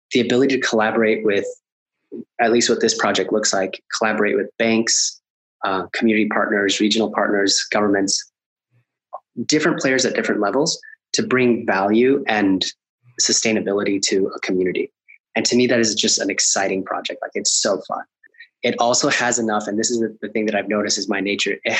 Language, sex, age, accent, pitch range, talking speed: English, male, 20-39, American, 105-125 Hz, 175 wpm